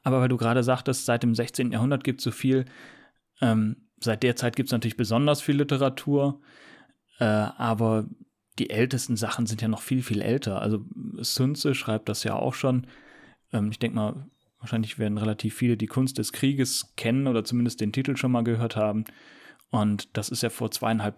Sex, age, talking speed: male, 30-49, 195 wpm